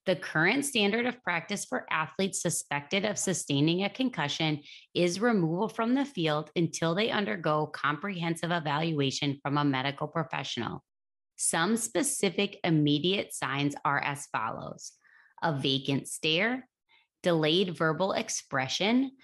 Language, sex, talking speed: English, female, 120 wpm